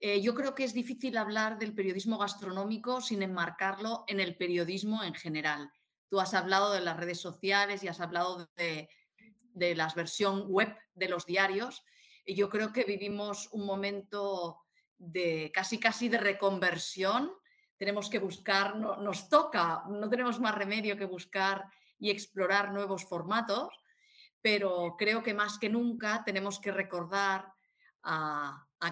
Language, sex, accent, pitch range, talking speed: Portuguese, female, Spanish, 185-215 Hz, 150 wpm